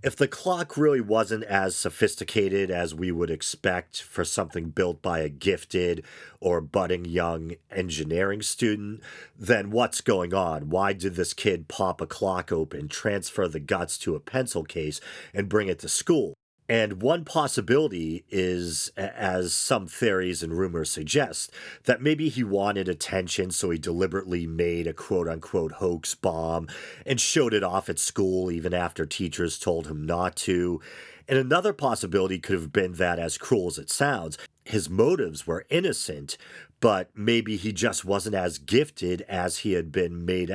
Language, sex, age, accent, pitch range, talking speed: English, male, 40-59, American, 85-105 Hz, 165 wpm